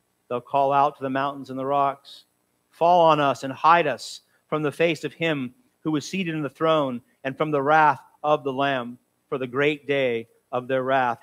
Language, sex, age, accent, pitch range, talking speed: English, male, 40-59, American, 125-180 Hz, 215 wpm